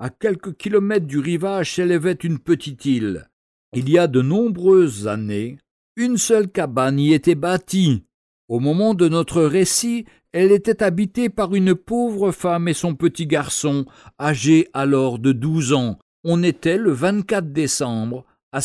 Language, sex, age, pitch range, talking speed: French, male, 50-69, 145-190 Hz, 155 wpm